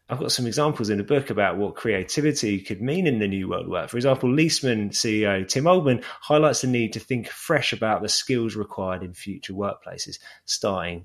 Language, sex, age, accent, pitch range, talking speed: English, male, 20-39, British, 100-135 Hz, 205 wpm